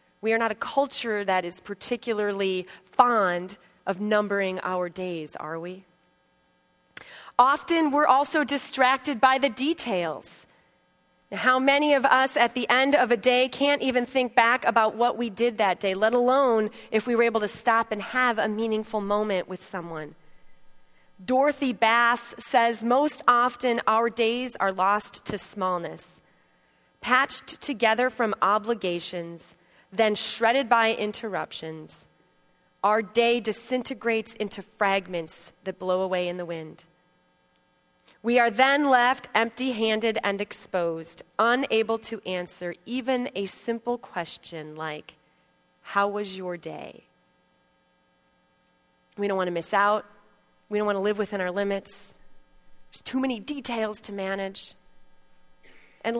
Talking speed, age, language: 135 wpm, 30-49, English